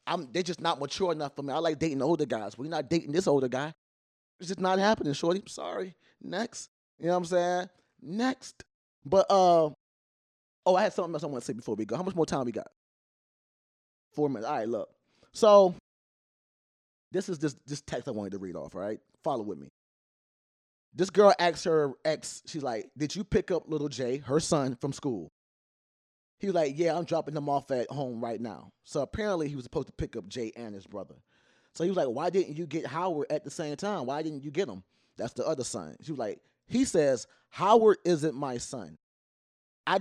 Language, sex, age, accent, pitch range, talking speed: English, male, 20-39, American, 130-185 Hz, 220 wpm